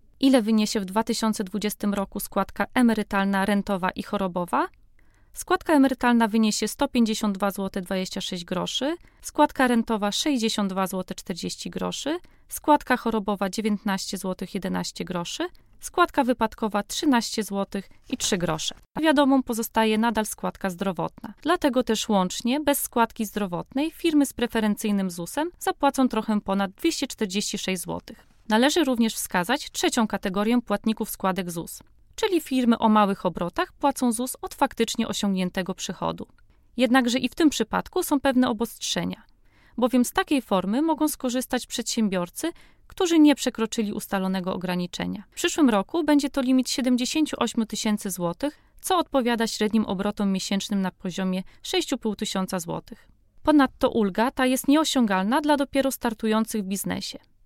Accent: native